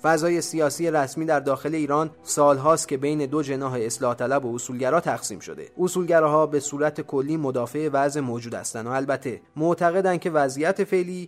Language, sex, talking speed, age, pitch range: Persian, male, 165 wpm, 30-49, 135-175 Hz